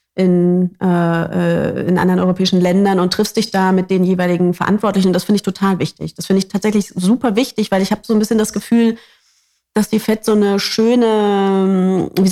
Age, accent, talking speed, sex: 30-49, German, 200 wpm, female